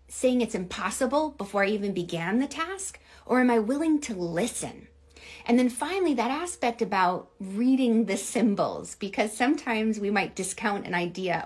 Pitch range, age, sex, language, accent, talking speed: 200-250 Hz, 30-49, female, English, American, 160 wpm